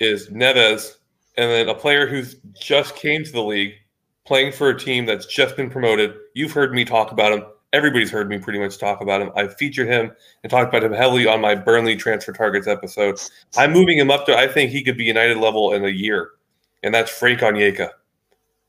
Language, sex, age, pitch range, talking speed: English, male, 20-39, 105-135 Hz, 215 wpm